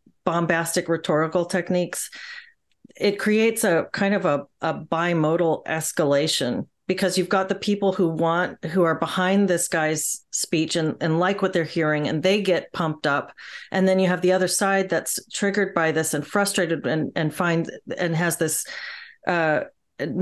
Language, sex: English, female